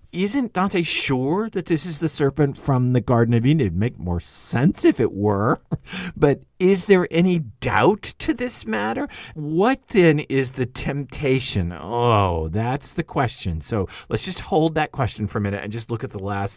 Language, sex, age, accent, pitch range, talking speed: English, male, 50-69, American, 105-145 Hz, 190 wpm